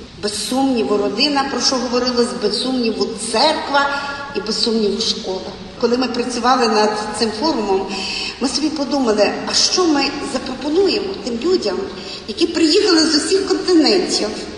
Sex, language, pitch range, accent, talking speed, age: female, Ukrainian, 225-290 Hz, native, 125 wpm, 40-59